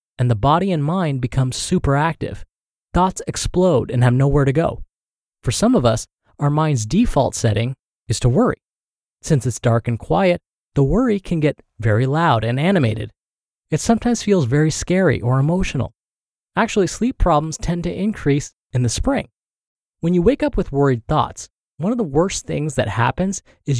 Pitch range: 120-175 Hz